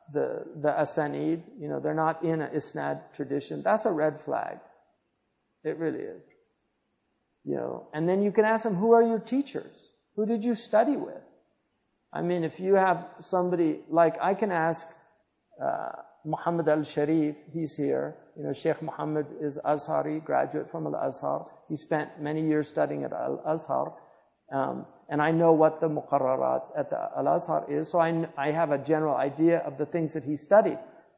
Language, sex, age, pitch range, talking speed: English, male, 50-69, 150-190 Hz, 175 wpm